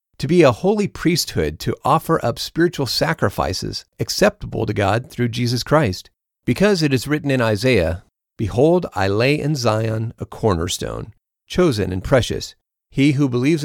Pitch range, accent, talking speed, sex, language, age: 105-150 Hz, American, 155 wpm, male, English, 40-59